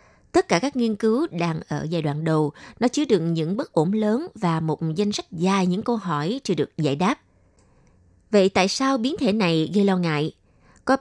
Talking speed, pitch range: 215 wpm, 170-230 Hz